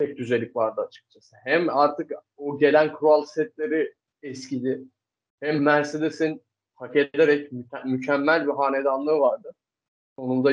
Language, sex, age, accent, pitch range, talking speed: Turkish, male, 30-49, native, 135-160 Hz, 115 wpm